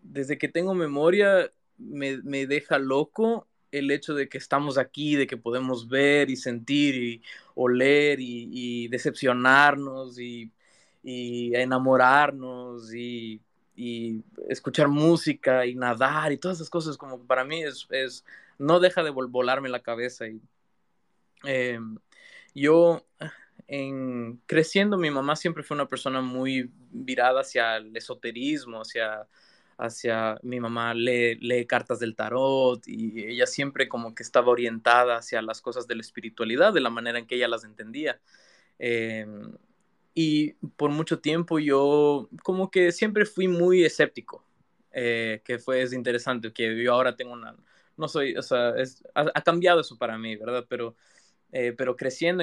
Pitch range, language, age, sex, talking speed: 120-145 Hz, English, 20-39, male, 155 wpm